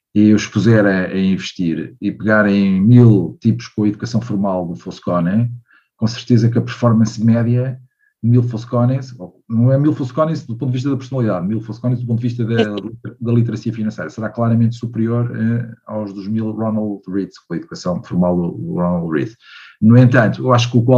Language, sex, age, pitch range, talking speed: Portuguese, male, 50-69, 110-130 Hz, 185 wpm